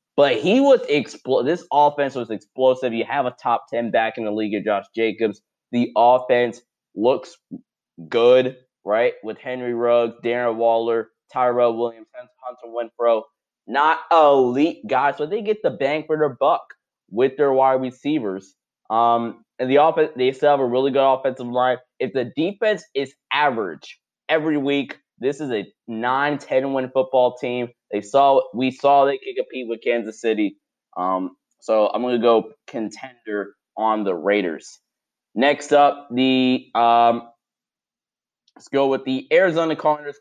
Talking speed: 155 wpm